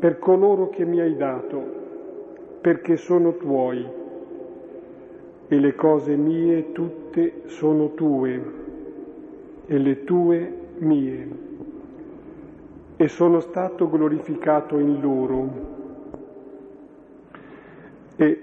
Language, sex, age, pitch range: Italian, male, 50-69, 140-165 Hz